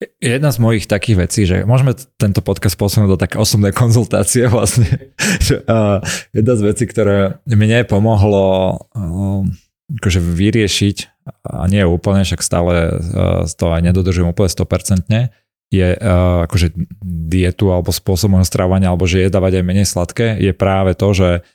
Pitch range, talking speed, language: 90-105 Hz, 140 wpm, Slovak